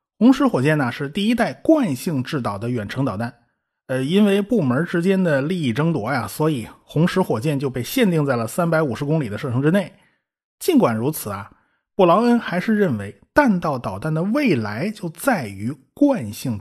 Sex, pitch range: male, 130-215 Hz